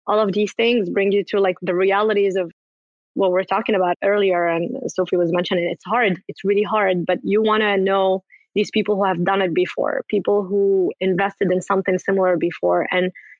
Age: 20-39